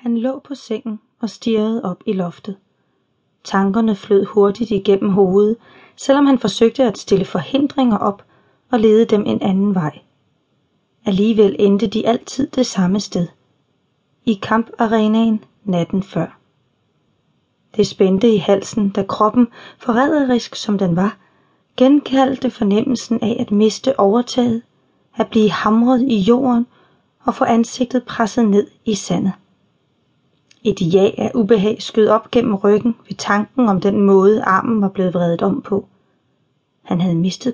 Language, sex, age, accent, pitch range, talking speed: Danish, female, 30-49, native, 195-235 Hz, 140 wpm